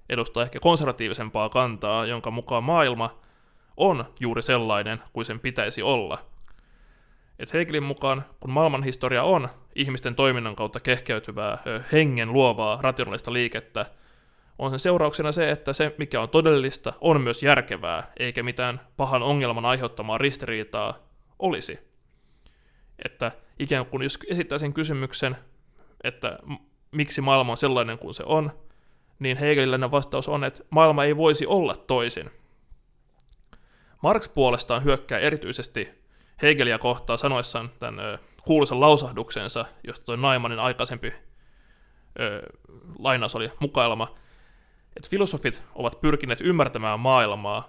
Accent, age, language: native, 20-39, Finnish